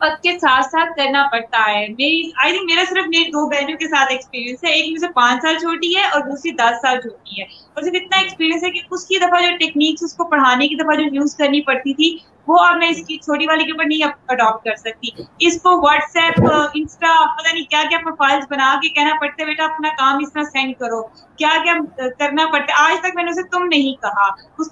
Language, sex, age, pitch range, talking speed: Urdu, female, 20-39, 275-335 Hz, 130 wpm